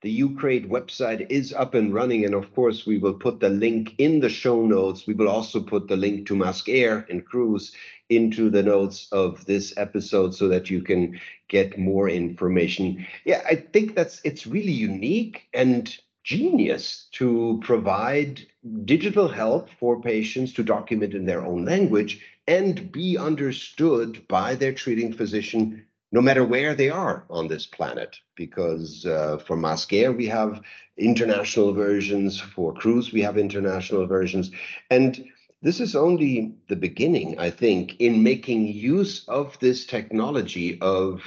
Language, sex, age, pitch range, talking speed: English, male, 50-69, 100-140 Hz, 155 wpm